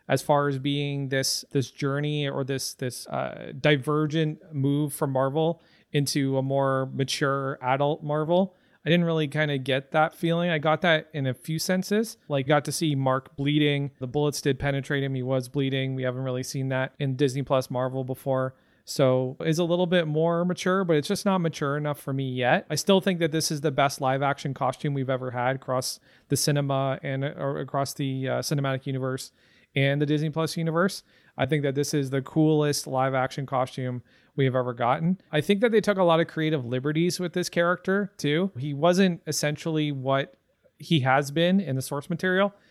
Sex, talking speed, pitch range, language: male, 200 wpm, 135-160 Hz, English